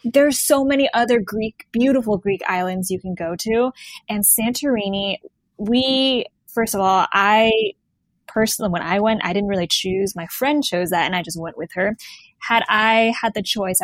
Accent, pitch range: American, 185-245 Hz